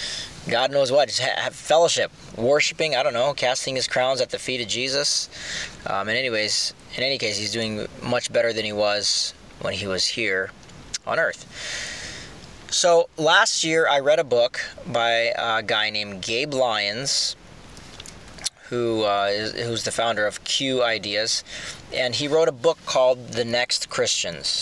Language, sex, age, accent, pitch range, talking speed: English, male, 20-39, American, 115-140 Hz, 165 wpm